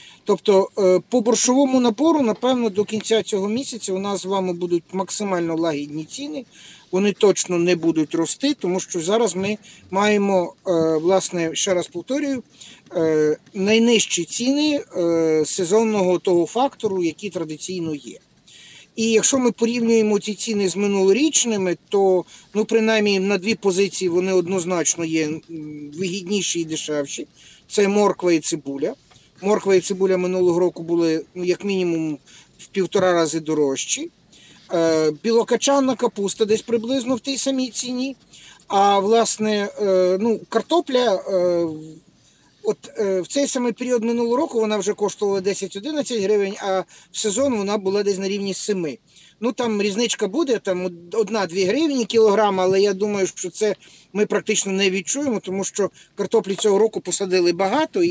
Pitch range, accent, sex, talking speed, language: 180-225 Hz, native, male, 145 wpm, Ukrainian